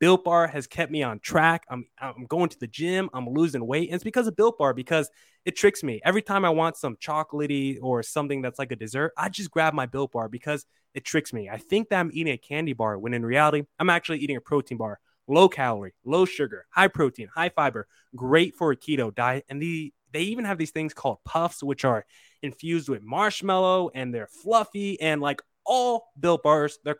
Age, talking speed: 20-39, 225 wpm